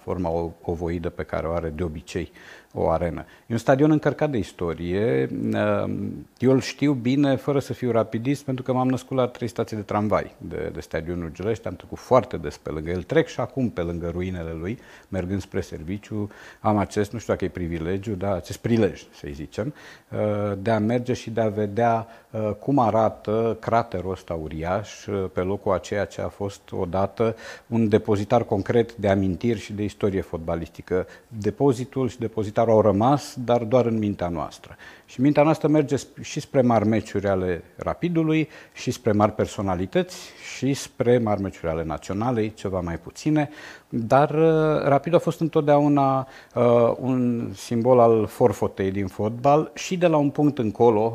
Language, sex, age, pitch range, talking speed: Romanian, male, 50-69, 95-125 Hz, 170 wpm